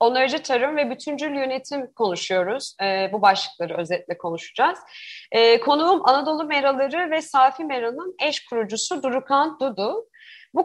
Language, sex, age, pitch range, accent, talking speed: Turkish, female, 30-49, 200-260 Hz, native, 130 wpm